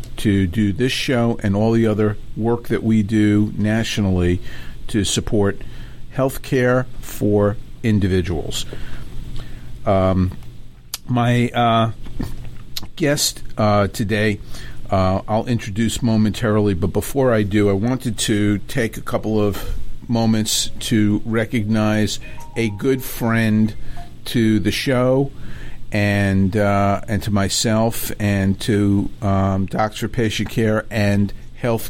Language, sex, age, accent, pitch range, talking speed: English, male, 50-69, American, 100-115 Hz, 115 wpm